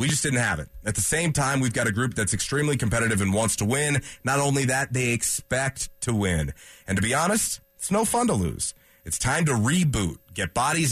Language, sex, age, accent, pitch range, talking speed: English, male, 30-49, American, 90-130 Hz, 230 wpm